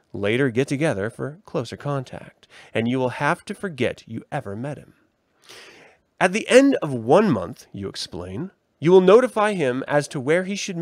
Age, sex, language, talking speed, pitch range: 30-49, male, English, 185 wpm, 120-160 Hz